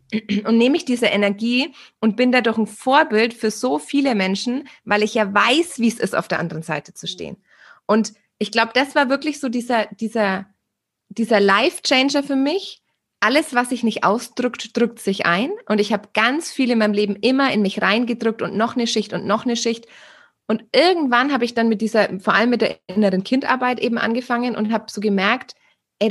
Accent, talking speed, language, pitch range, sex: German, 205 wpm, German, 205-245 Hz, female